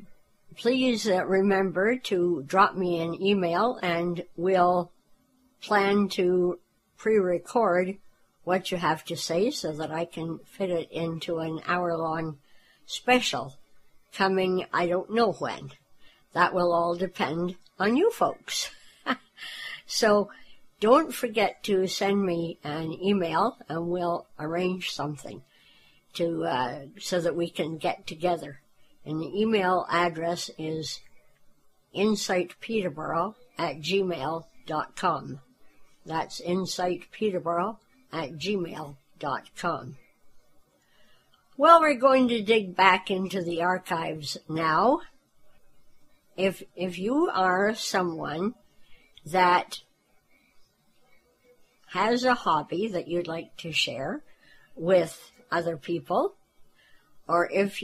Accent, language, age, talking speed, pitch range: American, English, 60-79, 105 wpm, 170-200 Hz